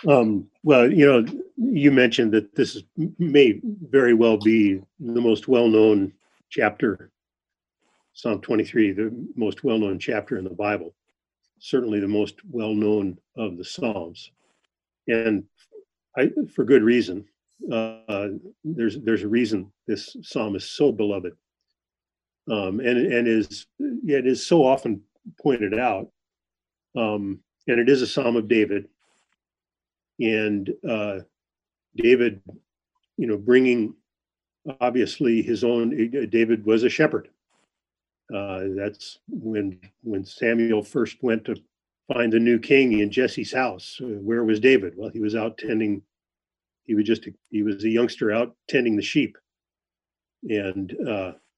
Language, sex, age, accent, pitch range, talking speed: English, male, 40-59, American, 100-120 Hz, 130 wpm